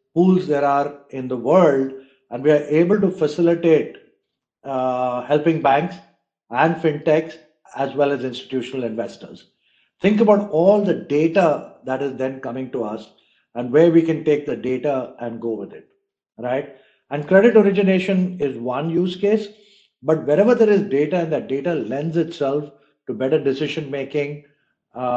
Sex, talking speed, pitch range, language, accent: male, 160 wpm, 130-165 Hz, English, Indian